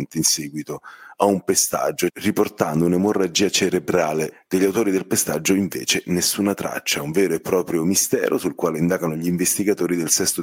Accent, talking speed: native, 155 wpm